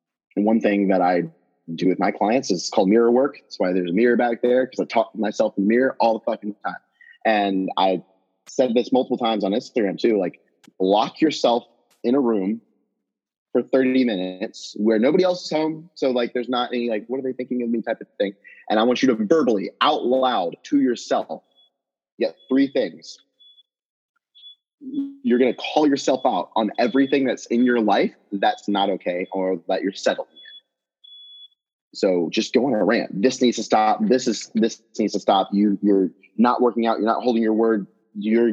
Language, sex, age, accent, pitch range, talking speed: English, male, 30-49, American, 105-125 Hz, 200 wpm